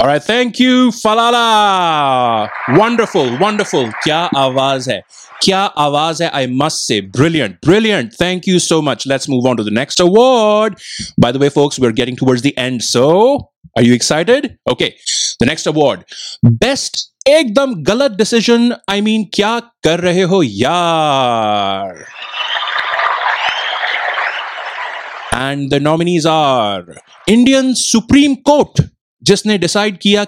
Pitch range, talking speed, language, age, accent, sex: 135-220 Hz, 135 wpm, Hindi, 30-49, native, male